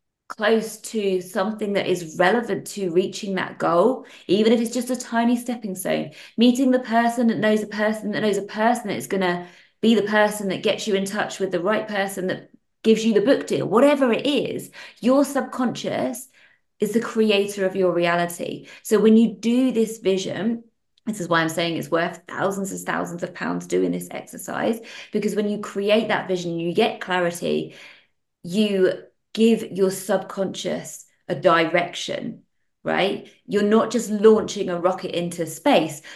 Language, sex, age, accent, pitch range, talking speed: English, female, 20-39, British, 180-225 Hz, 180 wpm